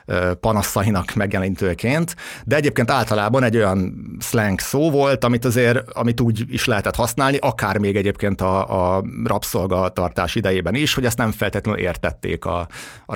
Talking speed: 145 wpm